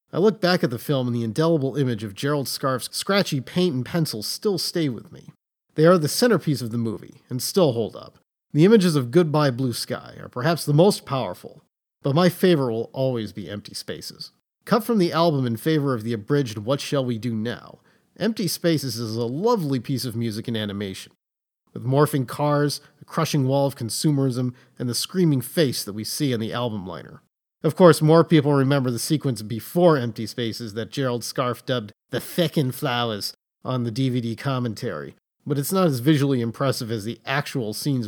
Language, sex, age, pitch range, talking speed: English, male, 40-59, 120-155 Hz, 195 wpm